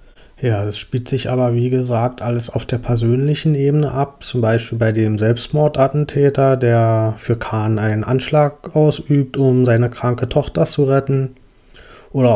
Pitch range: 115-130 Hz